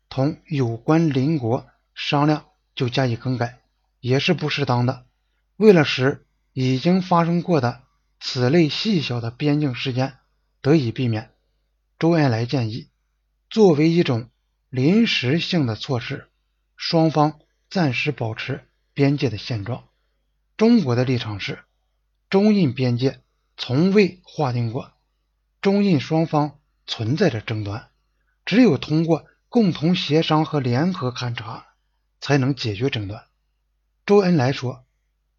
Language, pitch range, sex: Chinese, 120-160 Hz, male